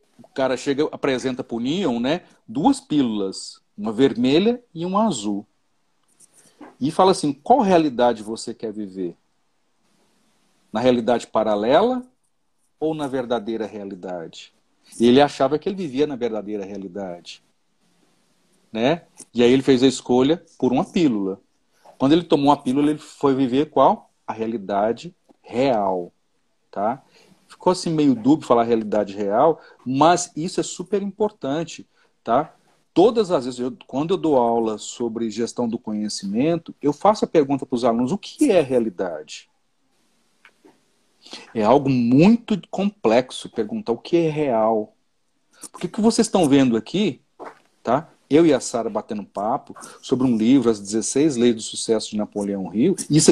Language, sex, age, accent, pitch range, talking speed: Portuguese, male, 40-59, Brazilian, 110-175 Hz, 145 wpm